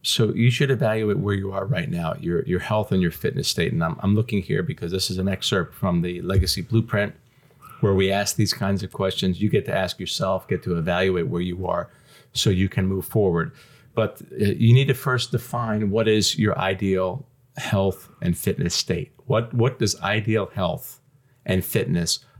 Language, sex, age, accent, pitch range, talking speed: English, male, 40-59, American, 95-130 Hz, 200 wpm